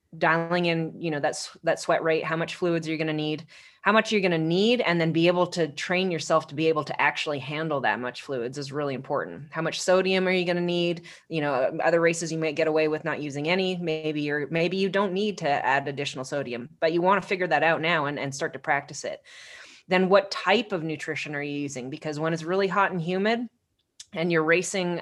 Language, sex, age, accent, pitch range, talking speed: English, female, 20-39, American, 150-180 Hz, 245 wpm